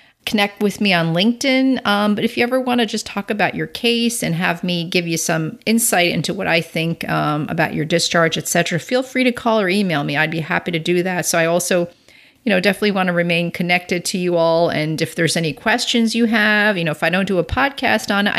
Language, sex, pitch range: English, female, 160-205 Hz